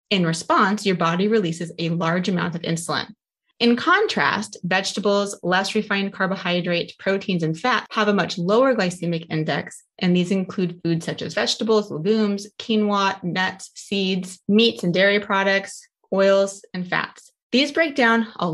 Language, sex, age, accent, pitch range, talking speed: English, female, 20-39, American, 170-215 Hz, 150 wpm